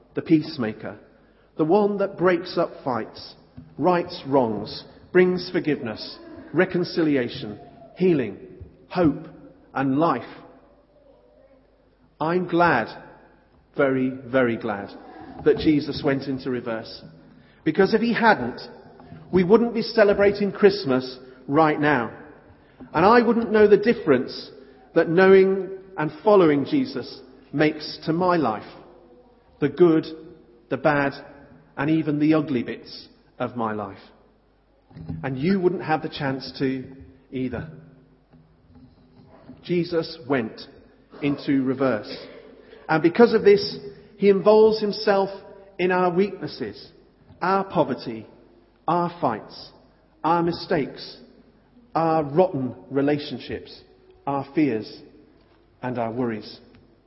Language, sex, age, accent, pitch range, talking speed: English, male, 40-59, British, 130-190 Hz, 105 wpm